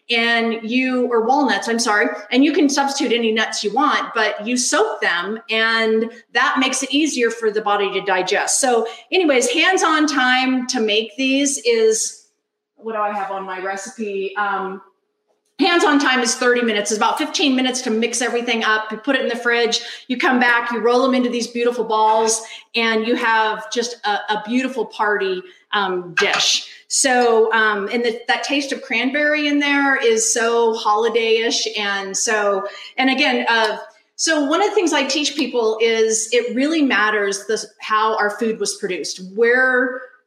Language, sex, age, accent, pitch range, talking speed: English, female, 40-59, American, 215-265 Hz, 175 wpm